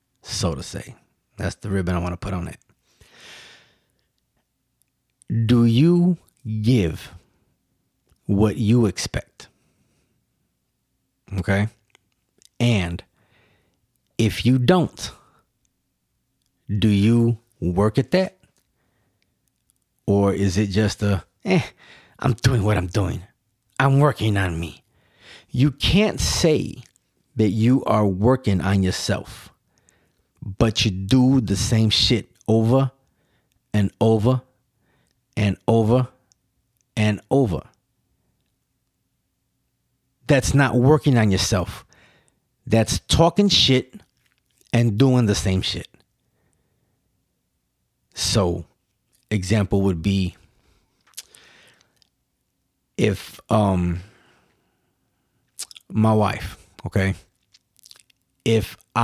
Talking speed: 90 wpm